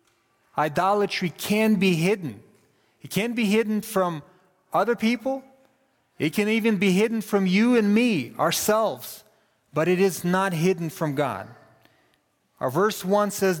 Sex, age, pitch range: male, 30-49, 145-205 Hz